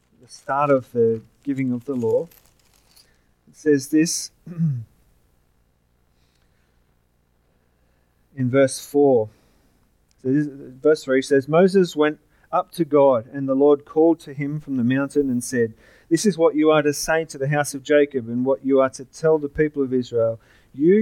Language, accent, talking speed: English, Australian, 170 wpm